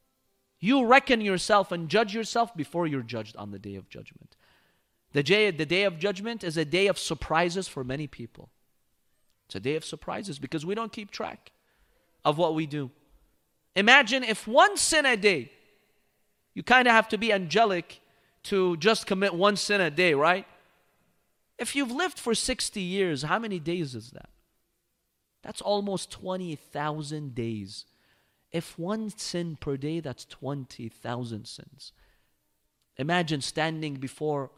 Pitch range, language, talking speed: 140-220 Hz, English, 150 wpm